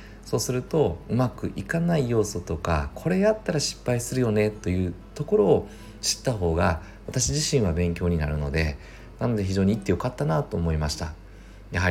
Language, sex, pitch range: Japanese, male, 85-110 Hz